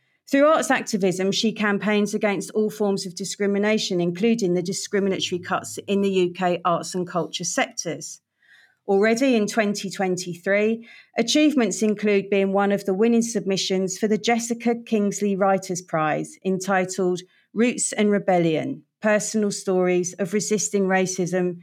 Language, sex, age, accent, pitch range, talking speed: English, female, 40-59, British, 180-215 Hz, 130 wpm